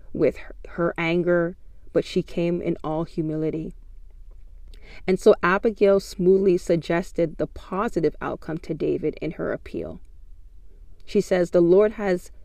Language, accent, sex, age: English, American, female, 40-59